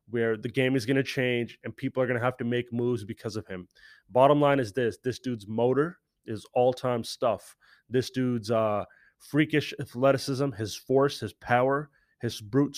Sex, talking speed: male, 190 wpm